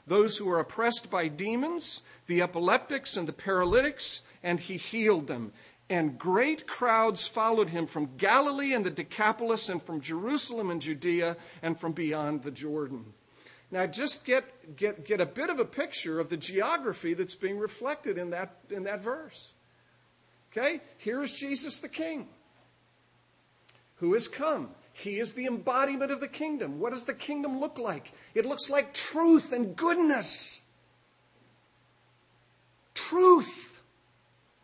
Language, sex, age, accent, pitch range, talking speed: English, male, 50-69, American, 185-285 Hz, 145 wpm